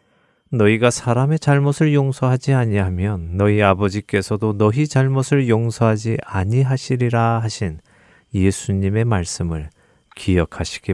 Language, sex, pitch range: Korean, male, 95-125 Hz